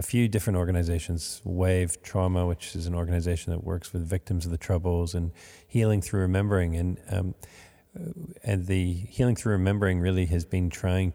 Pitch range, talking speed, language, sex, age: 85-95 Hz, 170 wpm, English, male, 40-59